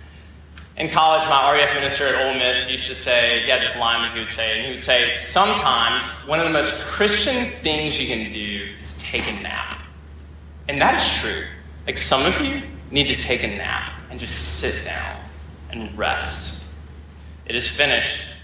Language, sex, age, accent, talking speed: English, male, 20-39, American, 190 wpm